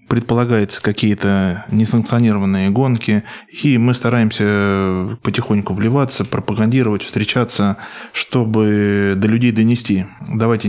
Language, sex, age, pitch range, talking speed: Russian, male, 20-39, 105-120 Hz, 90 wpm